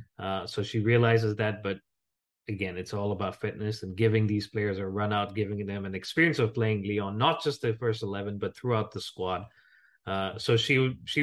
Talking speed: 205 wpm